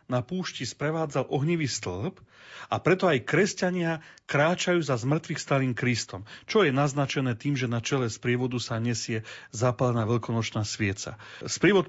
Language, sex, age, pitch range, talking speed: Slovak, male, 40-59, 120-150 Hz, 140 wpm